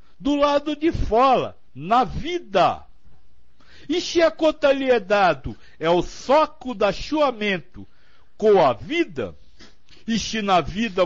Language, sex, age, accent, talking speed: Portuguese, male, 60-79, Brazilian, 125 wpm